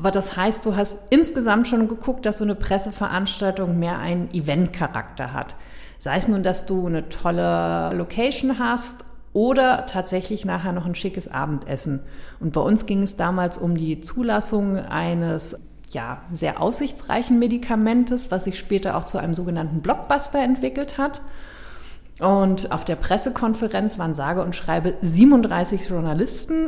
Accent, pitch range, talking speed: German, 180-225 Hz, 145 wpm